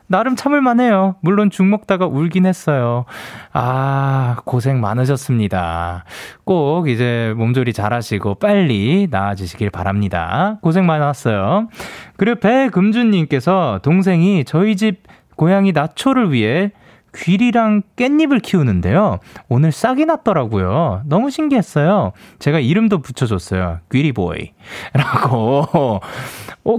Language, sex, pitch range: Korean, male, 130-215 Hz